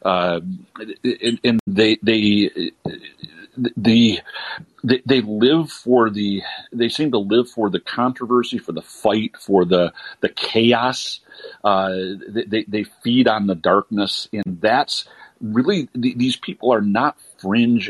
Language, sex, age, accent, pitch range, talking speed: English, male, 50-69, American, 95-120 Hz, 135 wpm